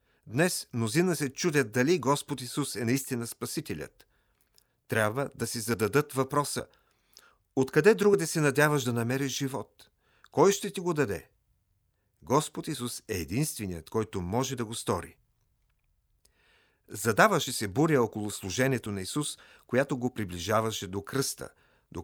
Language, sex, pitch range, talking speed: Bulgarian, male, 105-145 Hz, 140 wpm